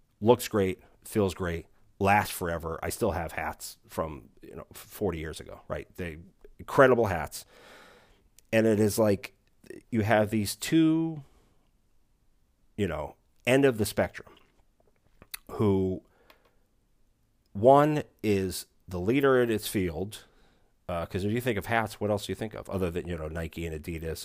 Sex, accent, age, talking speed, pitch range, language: male, American, 40-59, 155 wpm, 85-110 Hz, English